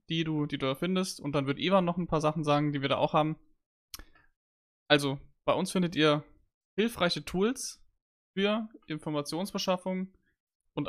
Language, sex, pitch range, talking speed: German, male, 145-170 Hz, 165 wpm